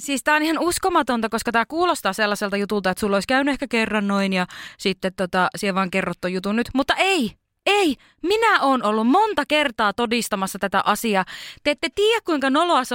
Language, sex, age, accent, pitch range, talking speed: Finnish, female, 20-39, native, 205-305 Hz, 195 wpm